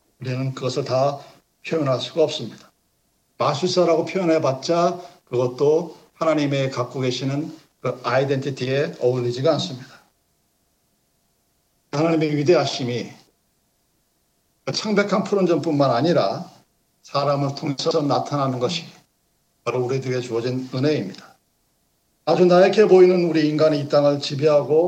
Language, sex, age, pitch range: Korean, male, 50-69, 140-180 Hz